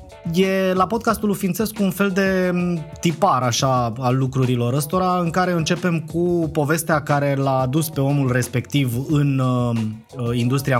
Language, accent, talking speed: Romanian, native, 150 wpm